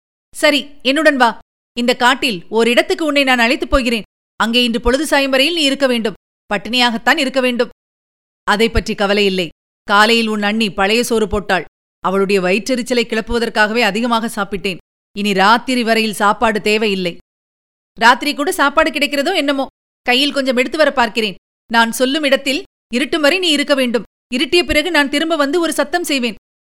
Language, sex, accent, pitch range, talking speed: Tamil, female, native, 205-285 Hz, 145 wpm